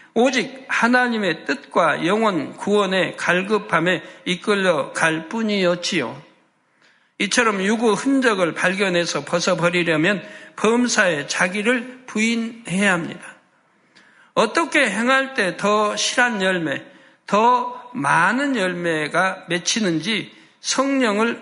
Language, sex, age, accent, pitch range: Korean, male, 60-79, native, 180-245 Hz